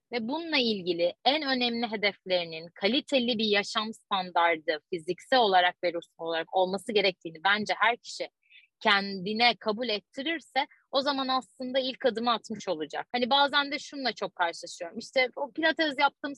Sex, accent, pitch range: female, native, 220-270 Hz